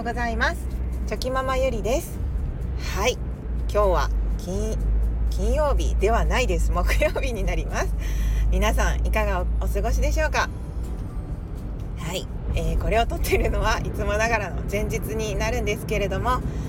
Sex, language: female, Japanese